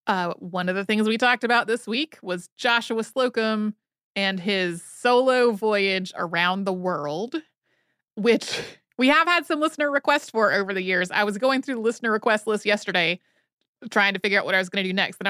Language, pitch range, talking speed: English, 195-255 Hz, 205 wpm